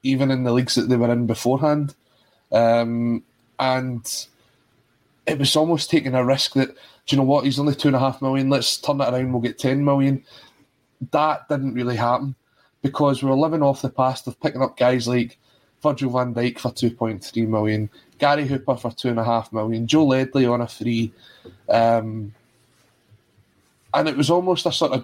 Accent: British